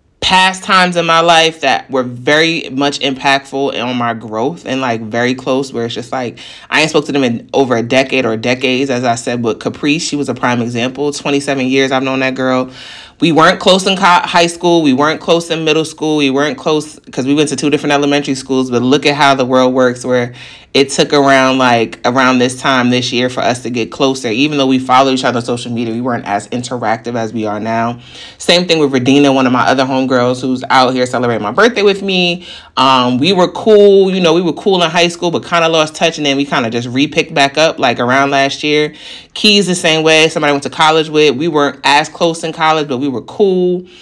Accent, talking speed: American, 240 wpm